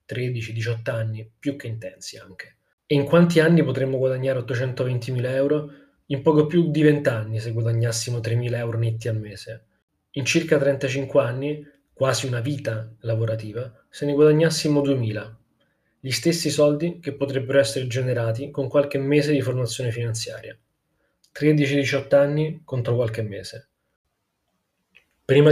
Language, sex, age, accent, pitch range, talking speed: Italian, male, 20-39, native, 115-140 Hz, 140 wpm